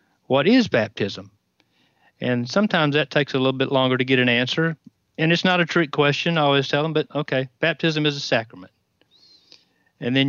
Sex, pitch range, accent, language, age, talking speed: male, 120-145 Hz, American, English, 40-59, 190 wpm